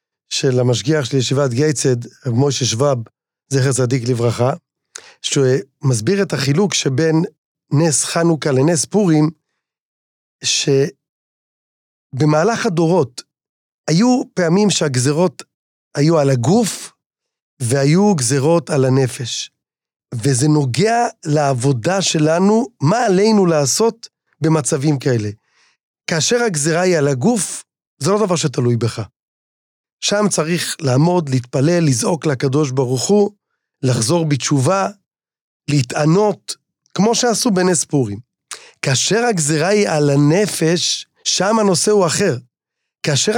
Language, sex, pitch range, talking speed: Hebrew, male, 140-195 Hz, 105 wpm